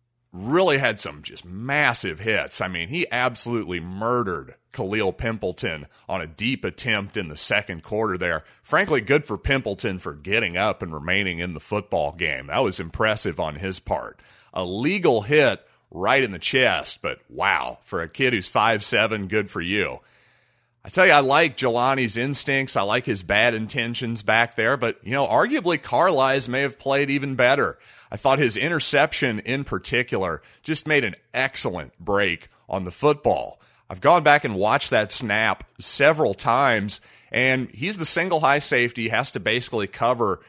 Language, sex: English, male